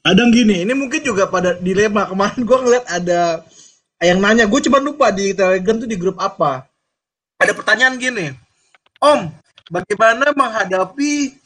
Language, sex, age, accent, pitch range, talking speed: Indonesian, male, 20-39, native, 170-240 Hz, 145 wpm